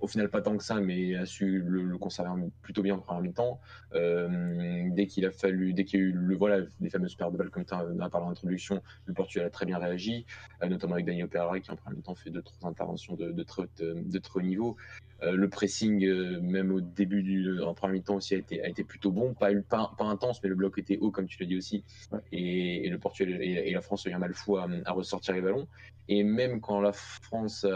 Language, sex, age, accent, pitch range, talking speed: French, male, 20-39, French, 90-100 Hz, 270 wpm